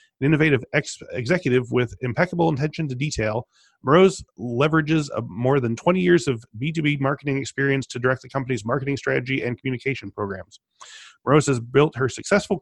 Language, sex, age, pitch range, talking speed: English, male, 30-49, 120-150 Hz, 160 wpm